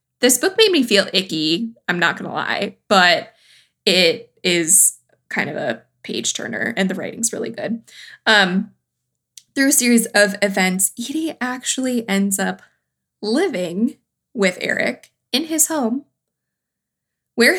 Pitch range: 190-245 Hz